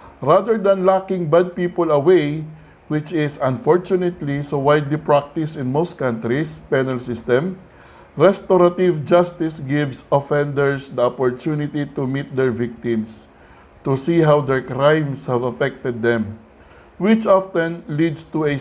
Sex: male